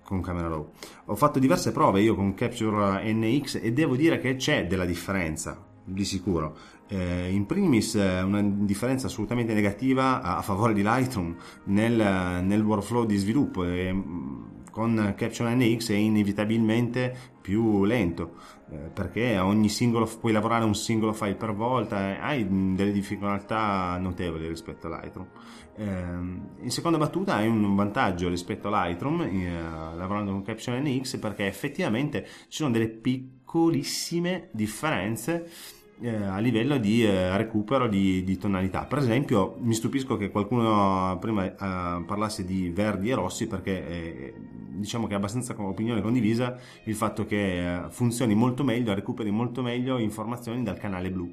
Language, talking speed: Italian, 135 wpm